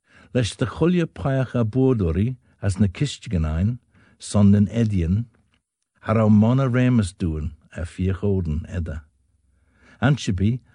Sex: male